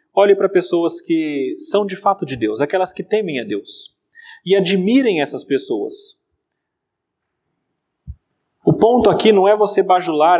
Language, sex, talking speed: Portuguese, male, 145 wpm